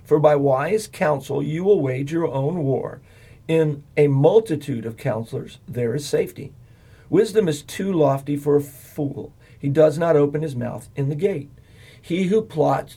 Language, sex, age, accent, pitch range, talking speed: English, male, 50-69, American, 125-165 Hz, 170 wpm